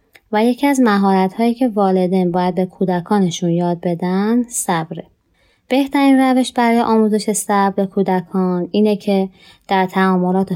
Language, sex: Persian, female